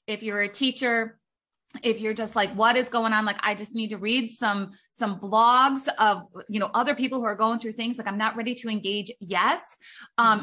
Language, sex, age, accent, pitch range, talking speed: English, female, 20-39, American, 200-235 Hz, 225 wpm